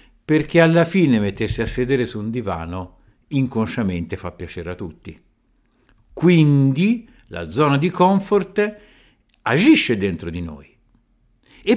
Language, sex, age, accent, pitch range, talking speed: Italian, male, 50-69, native, 110-160 Hz, 120 wpm